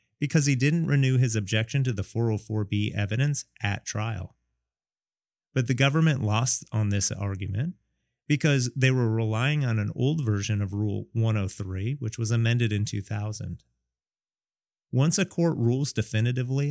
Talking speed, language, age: 145 wpm, English, 30-49